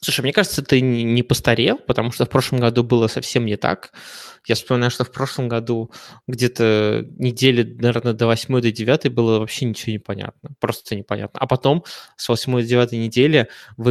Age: 20-39